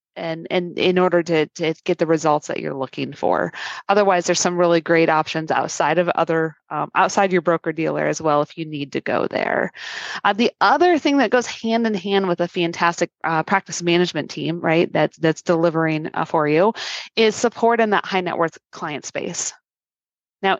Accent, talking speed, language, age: American, 200 wpm, English, 20-39